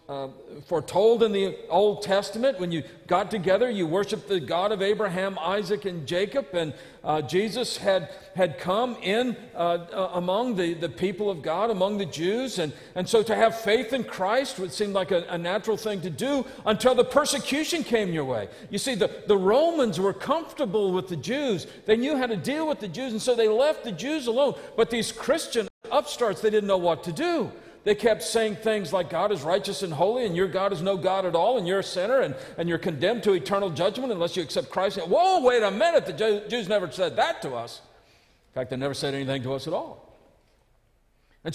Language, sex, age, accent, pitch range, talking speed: English, male, 50-69, American, 185-245 Hz, 220 wpm